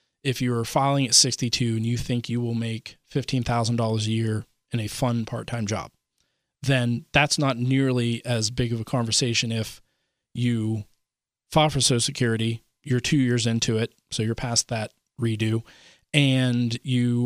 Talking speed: 160 wpm